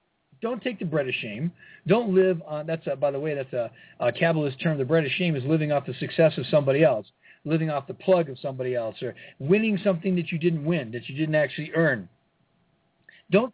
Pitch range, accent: 150-195 Hz, American